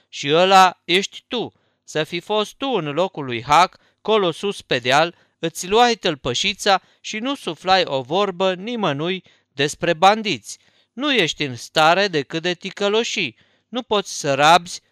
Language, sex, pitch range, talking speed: Romanian, male, 145-195 Hz, 150 wpm